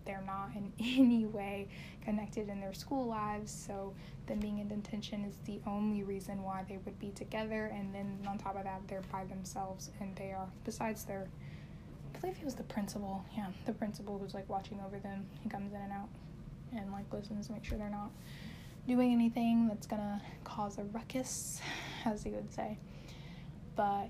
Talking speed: 190 wpm